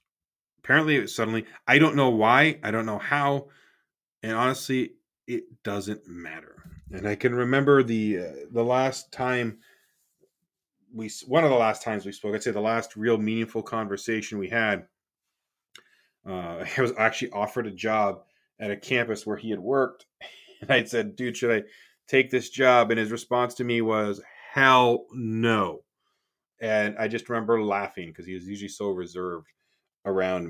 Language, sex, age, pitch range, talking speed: English, male, 30-49, 100-120 Hz, 170 wpm